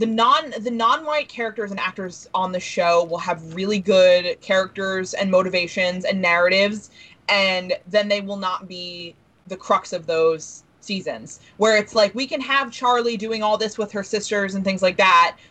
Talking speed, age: 180 wpm, 20-39